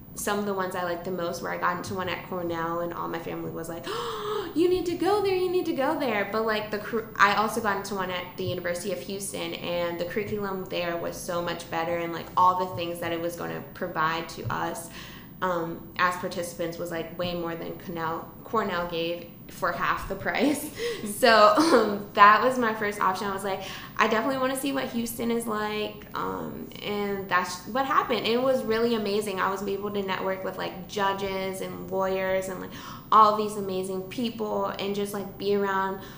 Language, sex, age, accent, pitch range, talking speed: English, female, 20-39, American, 175-210 Hz, 215 wpm